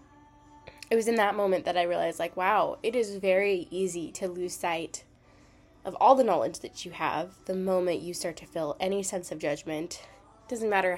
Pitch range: 160-190 Hz